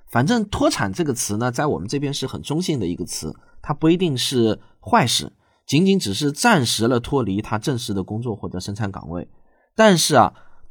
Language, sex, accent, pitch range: Chinese, male, native, 105-150 Hz